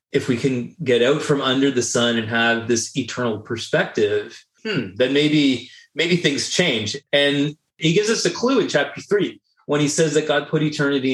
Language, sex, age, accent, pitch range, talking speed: English, male, 30-49, American, 125-155 Hz, 195 wpm